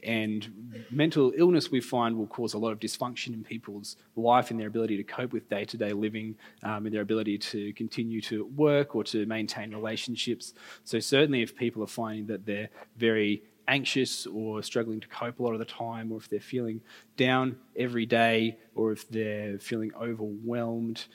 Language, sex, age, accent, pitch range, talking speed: English, male, 20-39, Australian, 110-125 Hz, 185 wpm